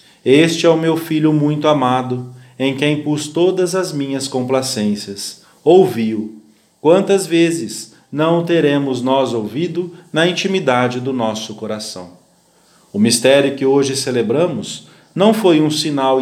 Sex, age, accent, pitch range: male, 40-59, Brazilian, 120-165 Hz